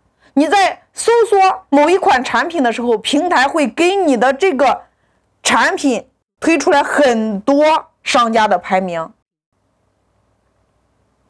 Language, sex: Chinese, female